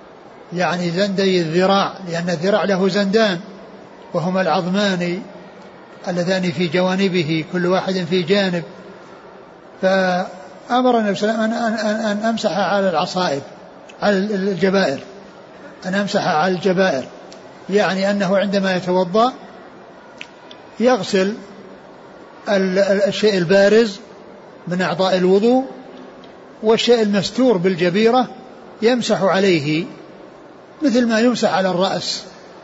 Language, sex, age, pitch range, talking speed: Arabic, male, 60-79, 185-215 Hz, 90 wpm